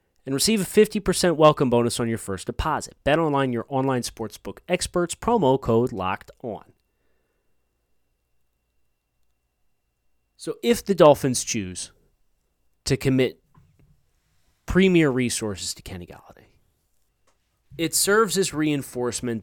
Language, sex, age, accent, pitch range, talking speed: English, male, 30-49, American, 100-140 Hz, 110 wpm